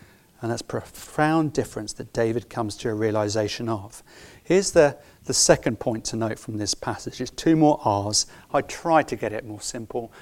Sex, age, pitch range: male, 40-59, 115-190 Hz